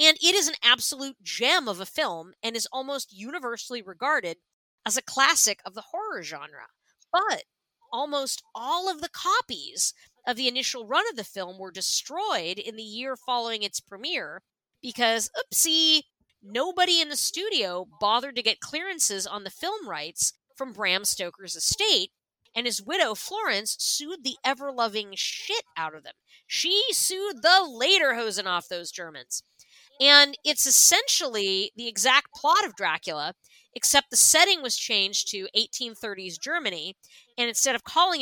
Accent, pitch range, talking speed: American, 210-320 Hz, 155 wpm